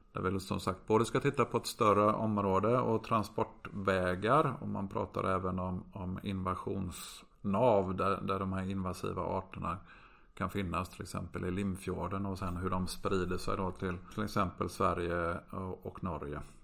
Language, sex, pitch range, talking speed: Swedish, male, 95-110 Hz, 165 wpm